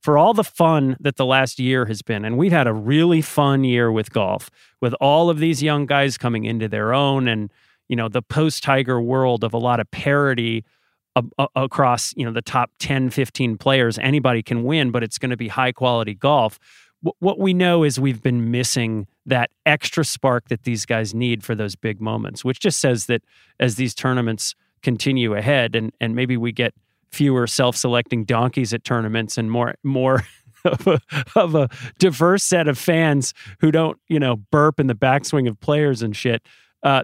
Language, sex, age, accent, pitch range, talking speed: English, male, 40-59, American, 120-150 Hz, 195 wpm